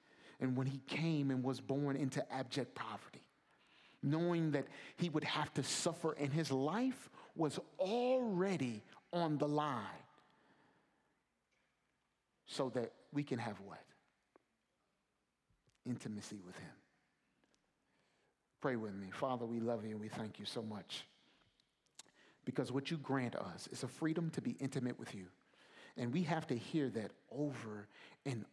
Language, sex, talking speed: English, male, 145 wpm